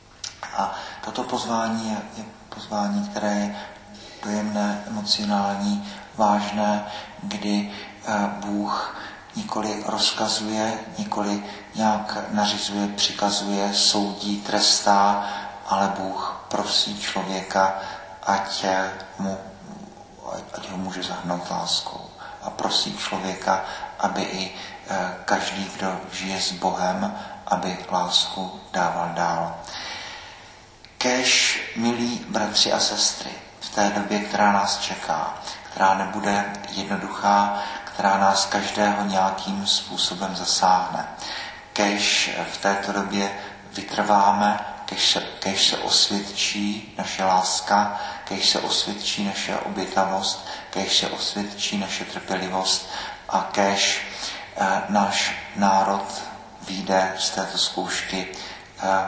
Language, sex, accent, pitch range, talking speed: Czech, male, native, 95-105 Hz, 100 wpm